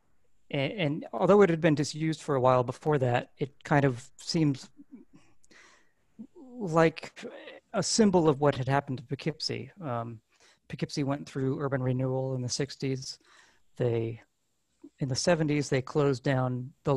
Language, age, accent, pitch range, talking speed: English, 40-59, American, 130-155 Hz, 145 wpm